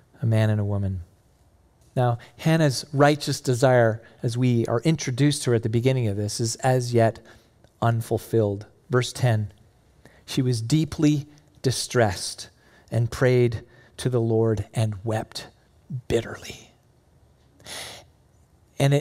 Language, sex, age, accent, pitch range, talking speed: English, male, 40-59, American, 115-150 Hz, 125 wpm